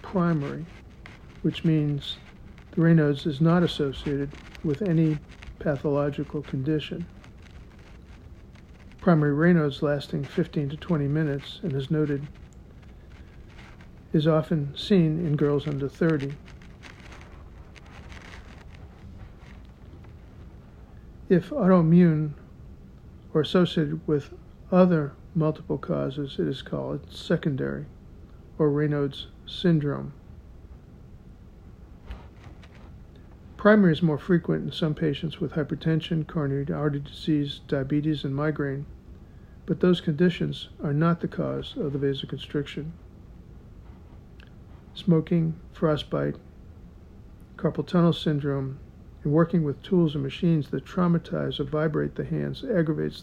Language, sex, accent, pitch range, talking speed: English, male, American, 135-165 Hz, 100 wpm